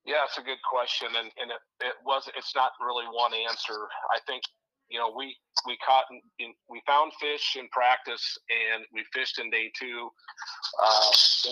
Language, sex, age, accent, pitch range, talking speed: English, male, 40-59, American, 110-130 Hz, 190 wpm